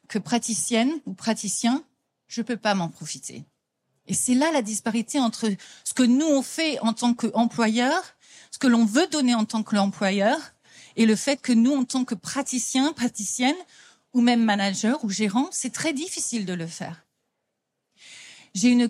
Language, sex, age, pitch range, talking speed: French, female, 40-59, 200-255 Hz, 175 wpm